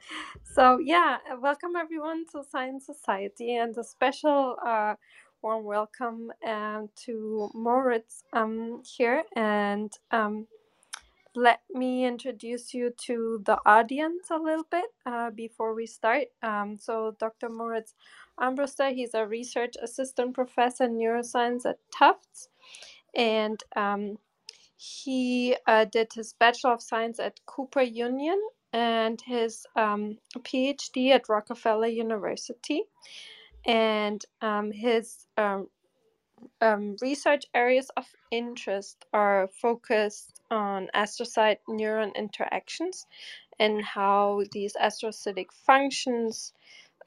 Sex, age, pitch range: female, 20-39, 215-255 Hz